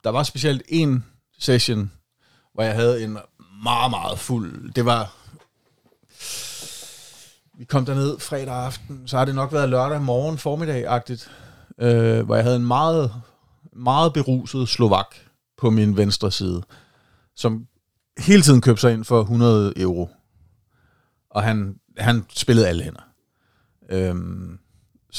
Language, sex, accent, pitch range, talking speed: Danish, male, native, 105-130 Hz, 135 wpm